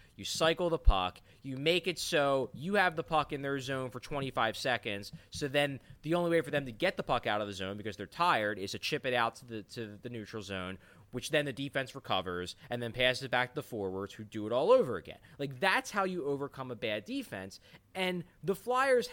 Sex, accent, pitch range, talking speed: male, American, 120-180 Hz, 240 wpm